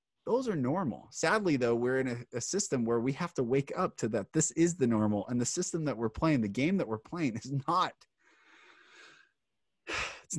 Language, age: English, 30-49